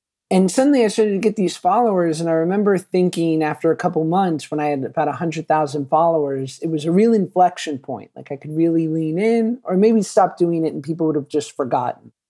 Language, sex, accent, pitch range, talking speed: English, male, American, 150-185 Hz, 220 wpm